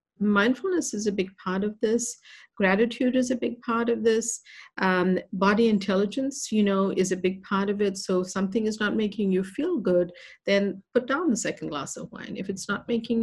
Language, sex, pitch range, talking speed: English, female, 175-230 Hz, 210 wpm